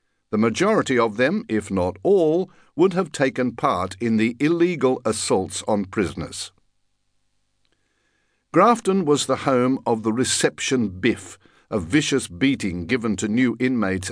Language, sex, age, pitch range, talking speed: English, male, 60-79, 95-145 Hz, 135 wpm